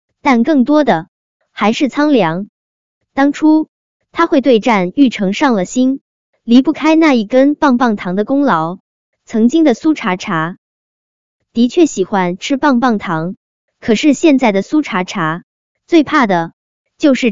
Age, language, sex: 20-39, Chinese, male